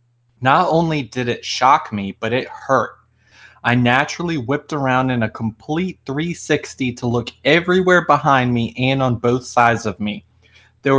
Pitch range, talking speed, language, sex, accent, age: 110-130 Hz, 160 wpm, English, male, American, 20-39